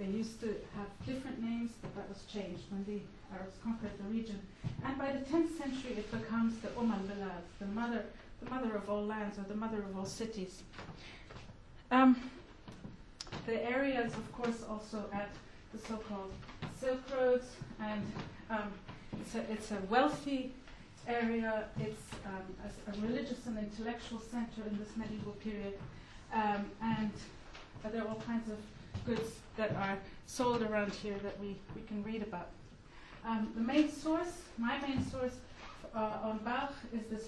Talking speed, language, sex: 165 wpm, English, female